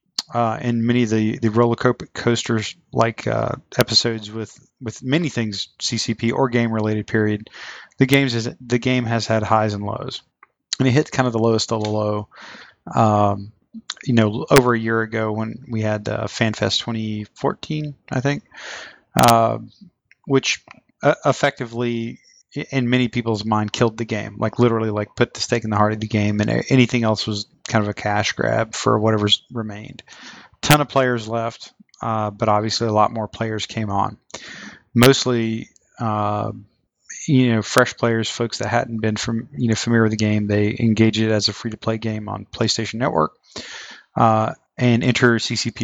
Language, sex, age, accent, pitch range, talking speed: English, male, 30-49, American, 110-125 Hz, 180 wpm